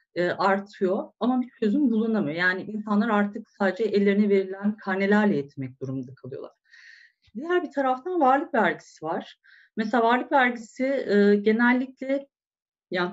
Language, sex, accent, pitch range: Turkish, female, native, 195-255 Hz